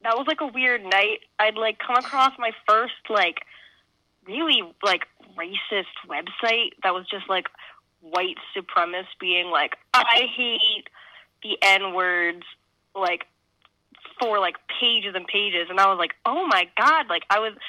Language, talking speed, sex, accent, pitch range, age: English, 155 wpm, female, American, 190-240 Hz, 10-29